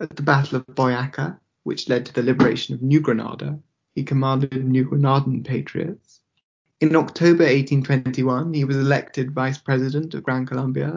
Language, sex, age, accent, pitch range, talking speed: English, male, 20-39, British, 130-150 Hz, 160 wpm